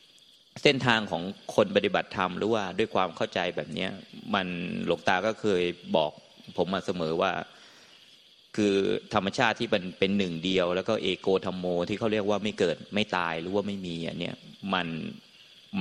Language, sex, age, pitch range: Thai, male, 30-49, 85-105 Hz